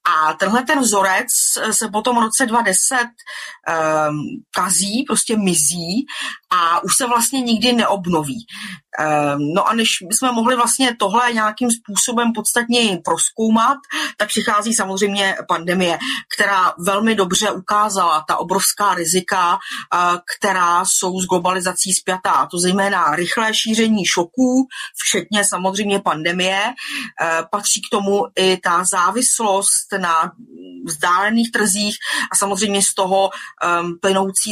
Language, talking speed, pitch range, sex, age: Slovak, 125 wpm, 180-220 Hz, female, 30-49